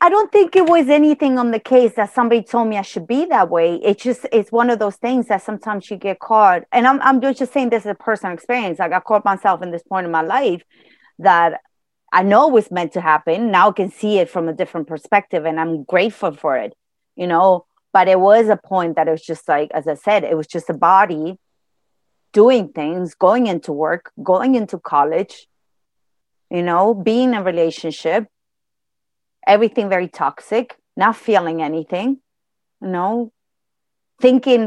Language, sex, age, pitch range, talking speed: English, female, 30-49, 165-230 Hz, 200 wpm